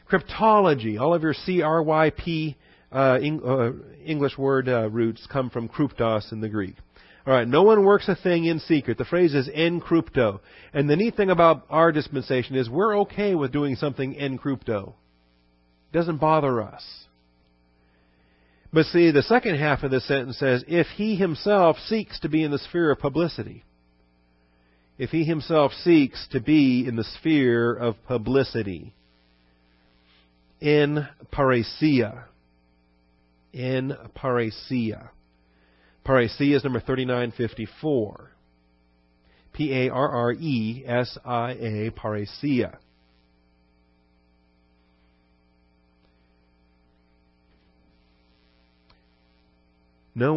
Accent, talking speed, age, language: American, 115 wpm, 40-59, English